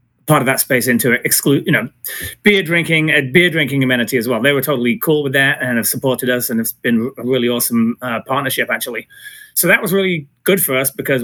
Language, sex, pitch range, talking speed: English, male, 120-150 Hz, 230 wpm